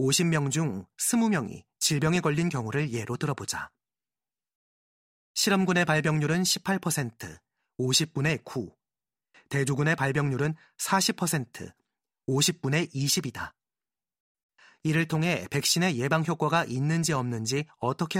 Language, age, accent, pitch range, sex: Korean, 30-49, native, 135-170 Hz, male